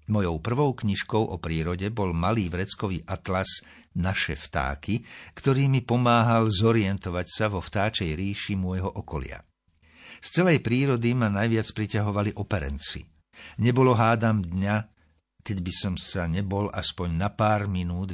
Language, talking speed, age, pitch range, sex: Slovak, 130 wpm, 60-79, 85-110 Hz, male